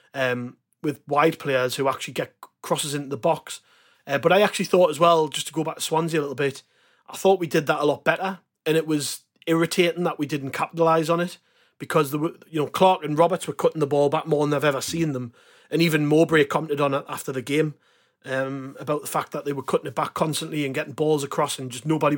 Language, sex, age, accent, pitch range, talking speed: English, male, 30-49, British, 145-175 Hz, 245 wpm